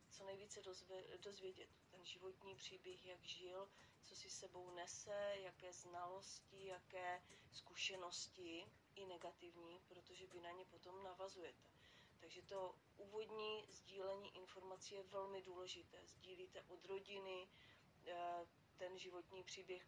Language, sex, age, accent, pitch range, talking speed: Czech, female, 30-49, native, 180-200 Hz, 120 wpm